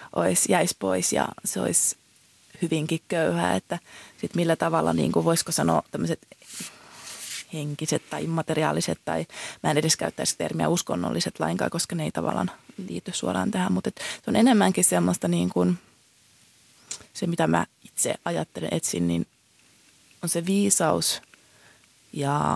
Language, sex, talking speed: Finnish, female, 135 wpm